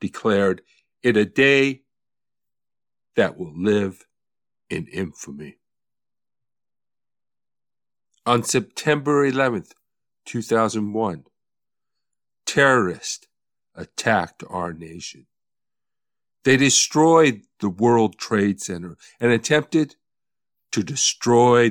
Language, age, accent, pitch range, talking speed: English, 50-69, American, 105-145 Hz, 75 wpm